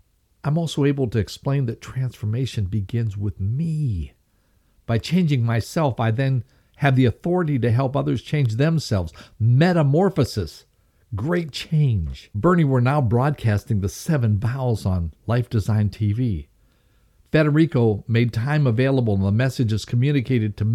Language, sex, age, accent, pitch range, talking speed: English, male, 50-69, American, 105-150 Hz, 135 wpm